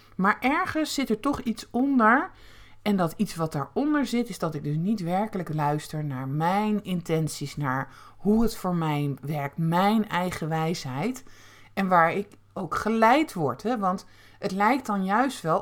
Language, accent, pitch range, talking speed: Dutch, Dutch, 150-210 Hz, 175 wpm